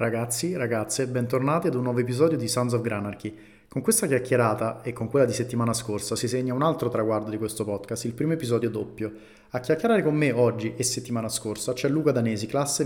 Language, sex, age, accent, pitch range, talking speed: Italian, male, 30-49, native, 110-130 Hz, 205 wpm